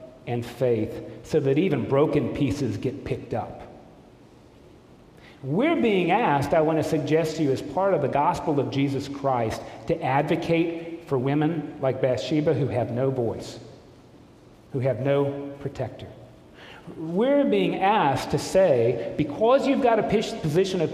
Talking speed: 150 wpm